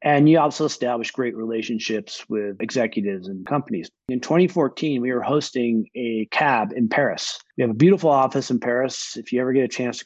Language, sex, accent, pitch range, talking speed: English, male, American, 115-145 Hz, 195 wpm